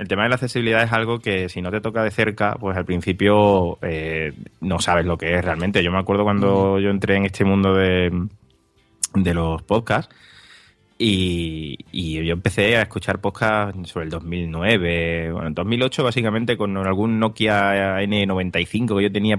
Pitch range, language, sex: 90-110 Hz, Spanish, male